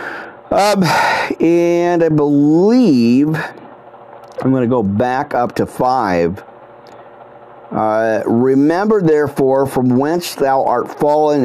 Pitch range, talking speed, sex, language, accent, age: 115-155 Hz, 105 wpm, male, English, American, 50-69